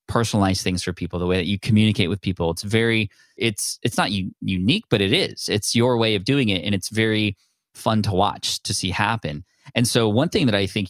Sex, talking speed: male, 235 wpm